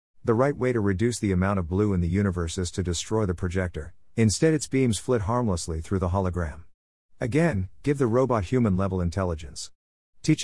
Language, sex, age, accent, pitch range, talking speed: English, male, 50-69, American, 90-120 Hz, 190 wpm